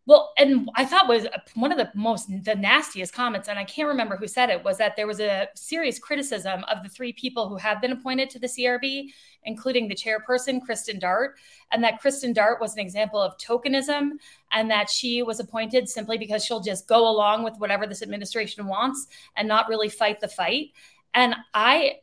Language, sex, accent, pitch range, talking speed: English, female, American, 215-265 Hz, 205 wpm